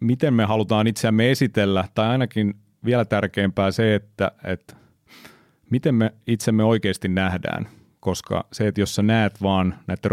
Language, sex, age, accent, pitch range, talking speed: Finnish, male, 30-49, native, 95-110 Hz, 150 wpm